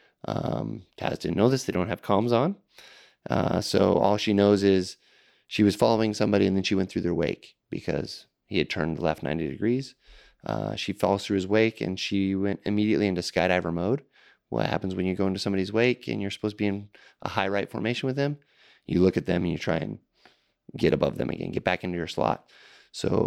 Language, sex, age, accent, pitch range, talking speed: English, male, 30-49, American, 85-105 Hz, 220 wpm